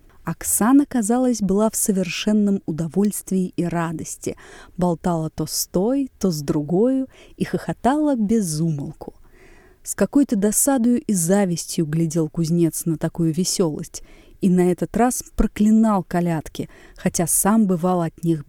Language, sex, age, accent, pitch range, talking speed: Russian, female, 20-39, native, 175-250 Hz, 125 wpm